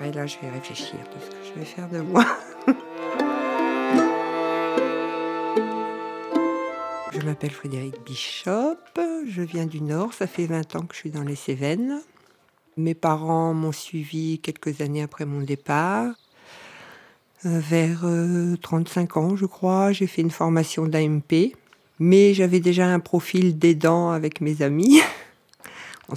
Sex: female